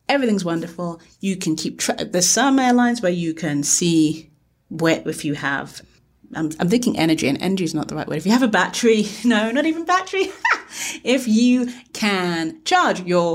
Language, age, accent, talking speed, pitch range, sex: English, 30-49, British, 190 wpm, 175-260 Hz, female